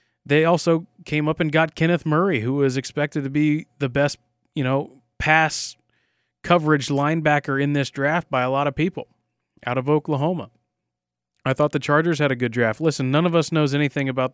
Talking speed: 195 wpm